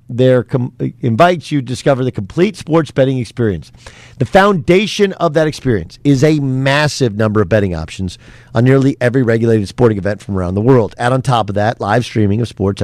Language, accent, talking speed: English, American, 195 wpm